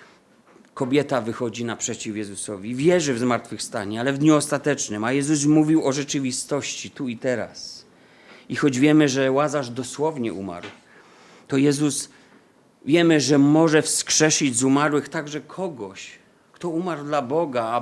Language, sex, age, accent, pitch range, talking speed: Polish, male, 40-59, native, 125-150 Hz, 140 wpm